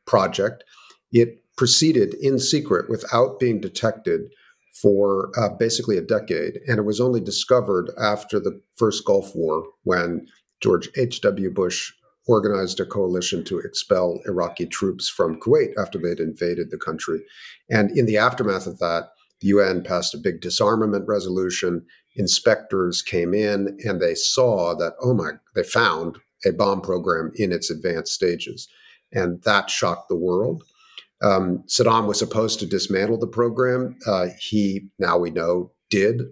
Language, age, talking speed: English, 50-69, 150 wpm